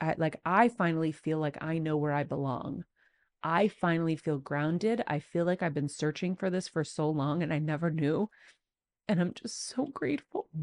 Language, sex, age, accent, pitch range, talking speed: English, female, 30-49, American, 175-260 Hz, 200 wpm